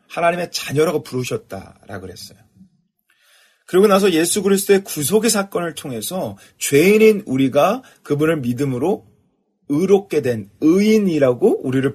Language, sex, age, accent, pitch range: Korean, male, 30-49, native, 135-210 Hz